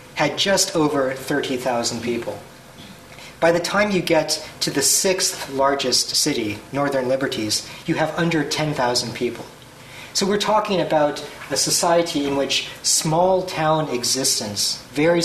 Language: English